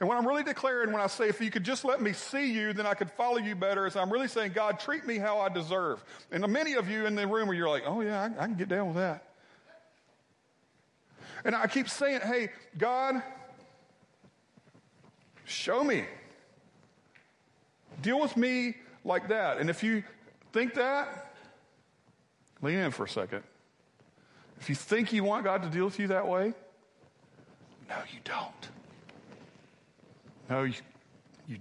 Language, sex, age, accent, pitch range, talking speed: English, male, 40-59, American, 140-220 Hz, 175 wpm